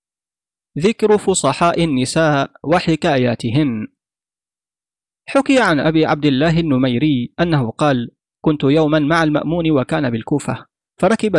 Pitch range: 140-170 Hz